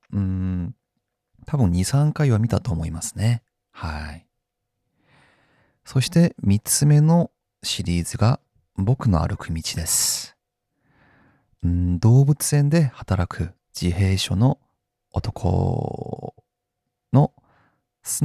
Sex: male